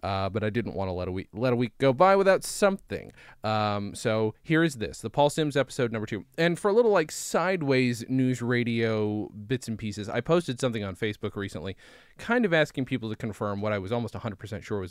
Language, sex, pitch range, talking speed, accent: English, male, 105-140 Hz, 230 wpm, American